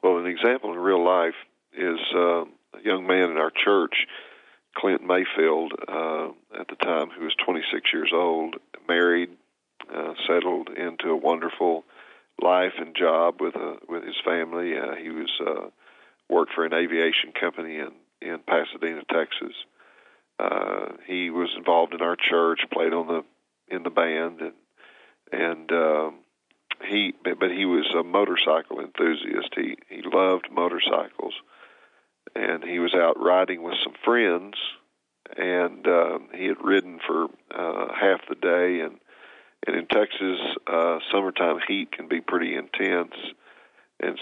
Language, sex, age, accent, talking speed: English, male, 40-59, American, 150 wpm